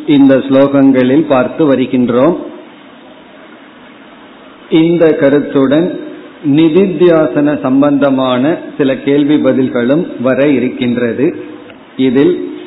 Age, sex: 50-69, male